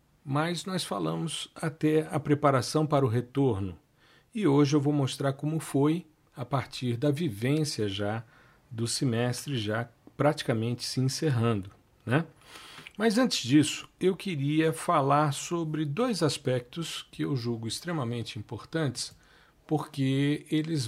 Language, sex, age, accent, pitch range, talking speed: Portuguese, male, 50-69, Brazilian, 120-155 Hz, 125 wpm